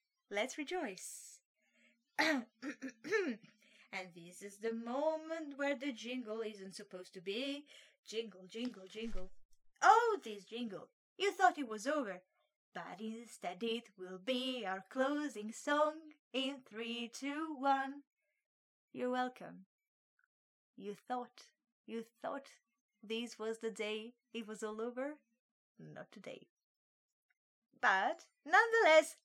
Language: English